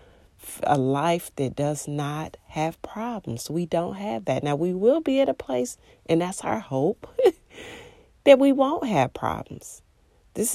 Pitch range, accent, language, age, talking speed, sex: 130-170 Hz, American, English, 40-59, 160 wpm, female